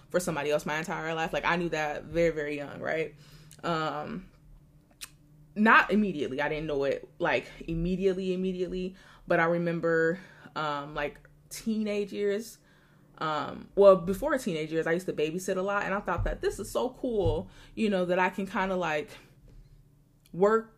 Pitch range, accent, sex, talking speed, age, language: 155-200 Hz, American, female, 170 wpm, 20-39, English